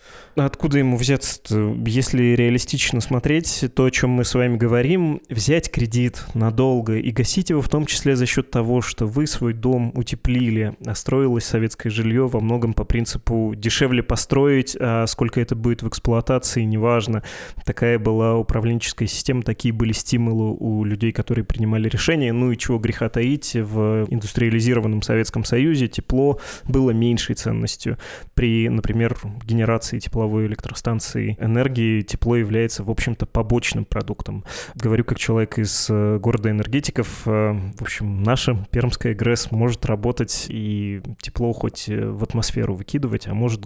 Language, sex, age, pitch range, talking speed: Russian, male, 20-39, 110-125 Hz, 145 wpm